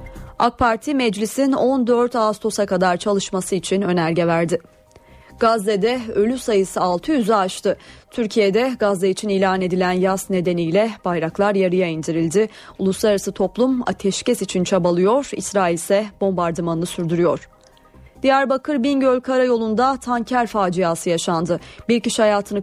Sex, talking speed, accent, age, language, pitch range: female, 110 wpm, native, 30-49, Turkish, 185-230 Hz